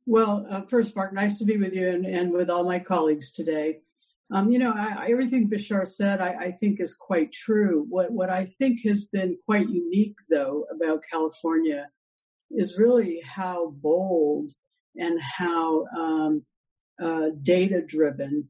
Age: 60-79